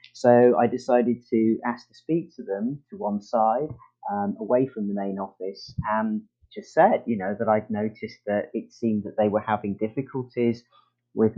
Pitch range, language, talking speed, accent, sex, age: 105-130 Hz, English, 185 wpm, British, male, 30-49